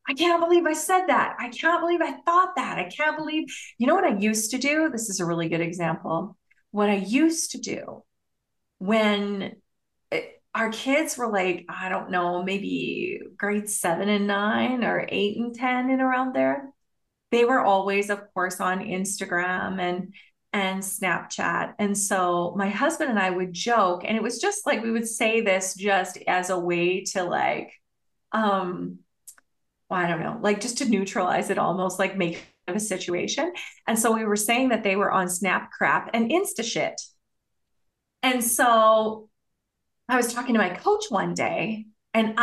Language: English